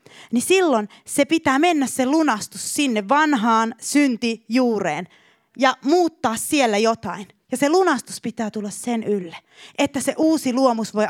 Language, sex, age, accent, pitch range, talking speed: Finnish, female, 30-49, native, 200-270 Hz, 140 wpm